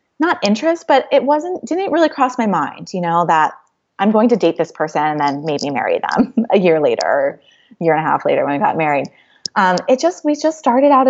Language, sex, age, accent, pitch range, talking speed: English, female, 20-39, American, 180-270 Hz, 230 wpm